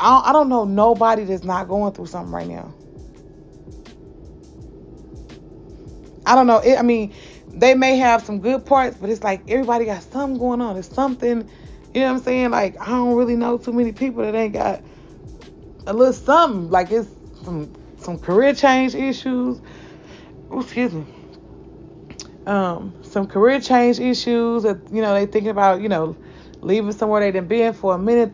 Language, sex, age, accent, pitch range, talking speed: English, female, 30-49, American, 175-235 Hz, 175 wpm